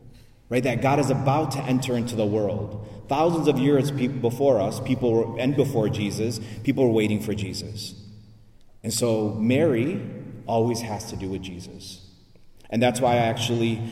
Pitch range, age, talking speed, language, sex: 105-125 Hz, 30-49, 165 wpm, English, male